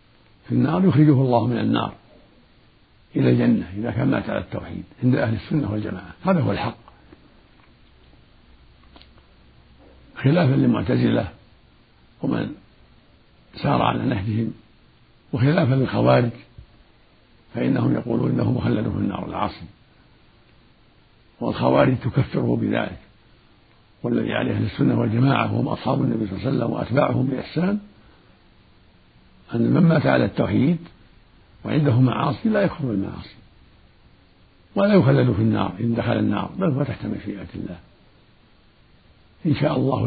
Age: 60-79